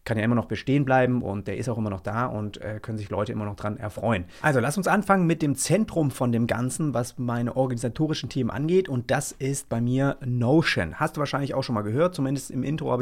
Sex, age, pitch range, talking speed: male, 30-49, 120-155 Hz, 250 wpm